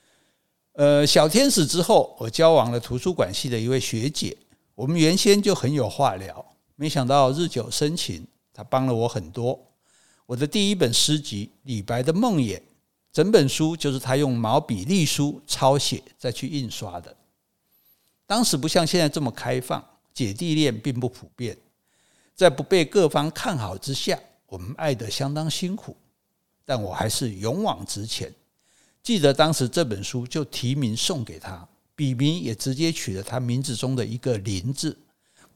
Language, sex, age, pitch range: Chinese, male, 60-79, 115-155 Hz